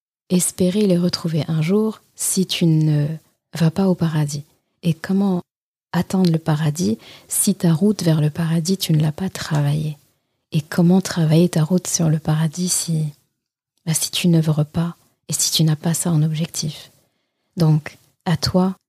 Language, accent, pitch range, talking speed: French, French, 155-180 Hz, 170 wpm